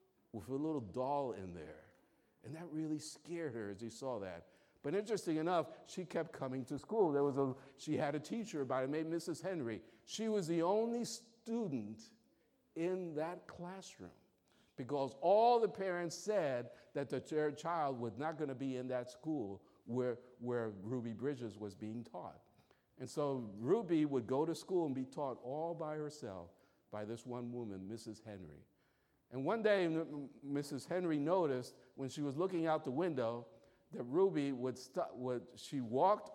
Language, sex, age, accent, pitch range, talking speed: English, male, 50-69, American, 120-170 Hz, 175 wpm